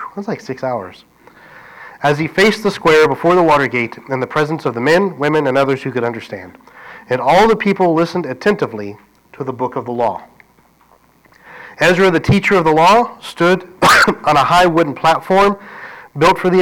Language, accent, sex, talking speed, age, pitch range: English, American, male, 190 wpm, 40-59, 130-195 Hz